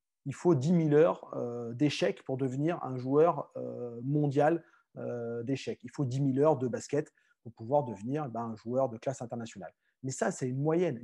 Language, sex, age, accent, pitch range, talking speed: French, male, 30-49, French, 135-175 Hz, 195 wpm